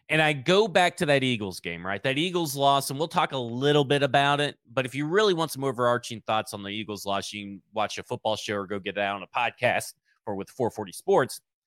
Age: 30-49